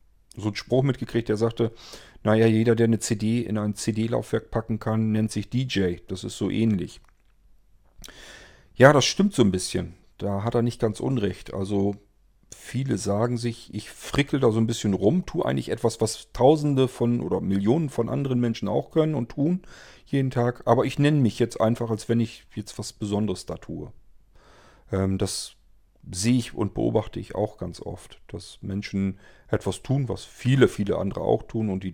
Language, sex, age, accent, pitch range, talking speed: German, male, 40-59, German, 100-120 Hz, 185 wpm